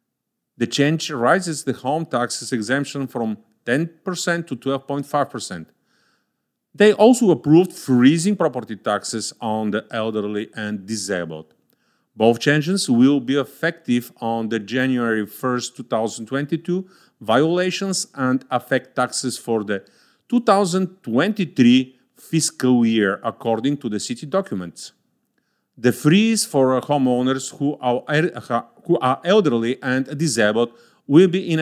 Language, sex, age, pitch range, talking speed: English, male, 40-59, 115-165 Hz, 115 wpm